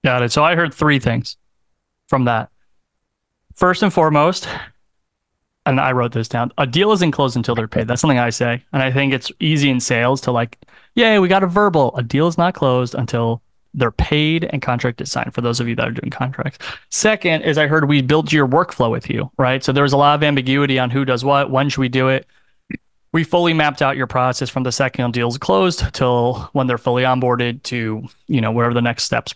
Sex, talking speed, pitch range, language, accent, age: male, 230 wpm, 120-145 Hz, English, American, 30-49